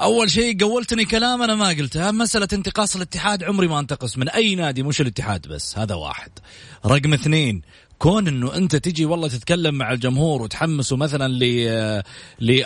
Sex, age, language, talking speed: male, 30-49, Arabic, 170 wpm